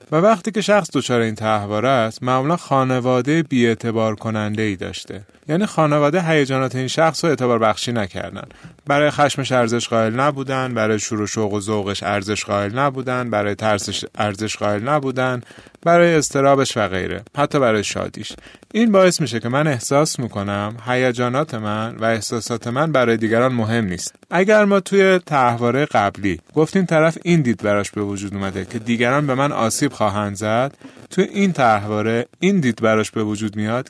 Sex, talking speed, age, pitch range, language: male, 165 wpm, 30-49, 110-155 Hz, Persian